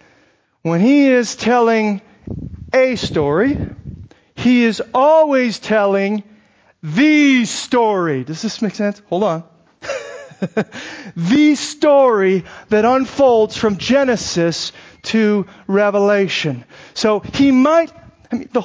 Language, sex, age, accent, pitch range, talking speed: English, male, 40-59, American, 180-260 Hz, 105 wpm